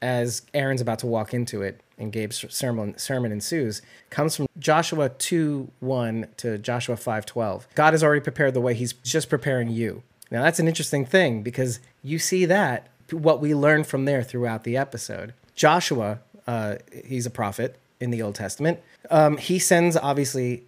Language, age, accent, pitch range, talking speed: English, 30-49, American, 120-150 Hz, 170 wpm